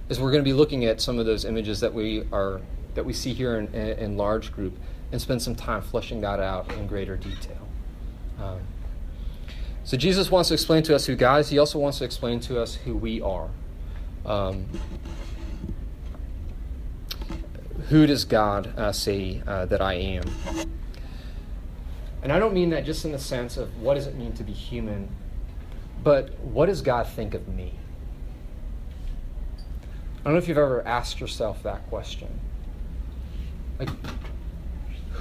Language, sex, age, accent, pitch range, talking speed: English, male, 30-49, American, 80-125 Hz, 170 wpm